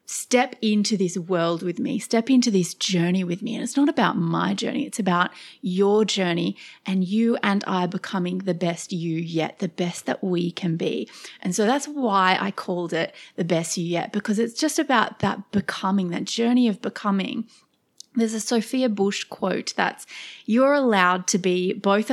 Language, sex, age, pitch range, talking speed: English, female, 30-49, 195-250 Hz, 185 wpm